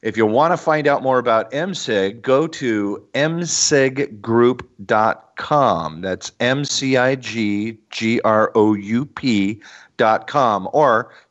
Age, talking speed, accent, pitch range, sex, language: 40-59, 90 wpm, American, 100-125 Hz, male, English